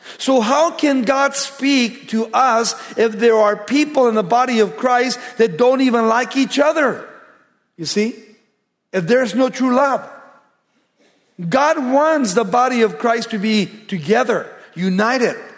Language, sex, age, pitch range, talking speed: English, male, 50-69, 195-245 Hz, 150 wpm